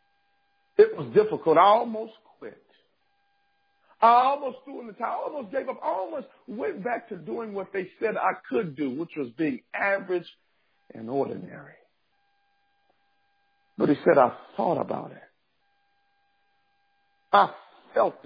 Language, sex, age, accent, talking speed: English, male, 60-79, American, 140 wpm